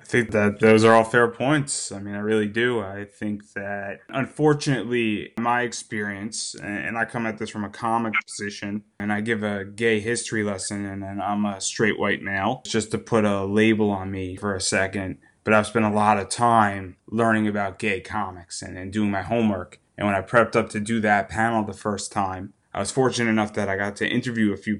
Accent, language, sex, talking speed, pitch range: American, English, male, 220 wpm, 100-115 Hz